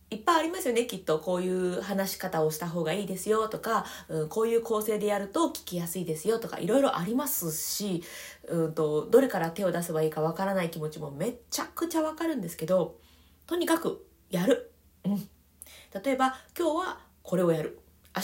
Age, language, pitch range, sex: 20-39, Japanese, 160-260 Hz, female